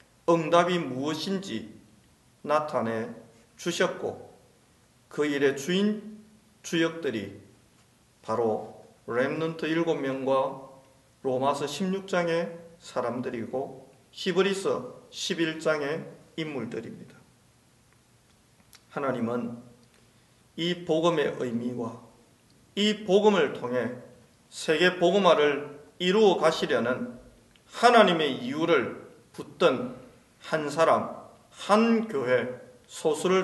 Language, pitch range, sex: Korean, 130-180 Hz, male